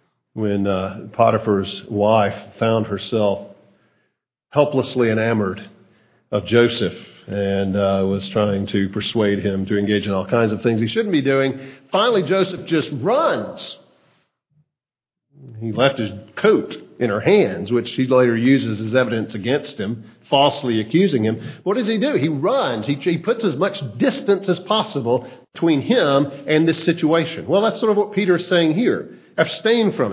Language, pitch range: English, 115-170 Hz